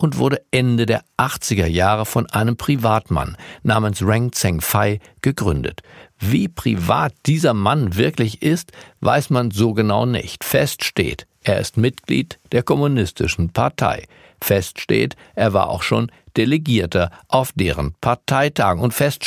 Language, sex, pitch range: German, male, 100-140 Hz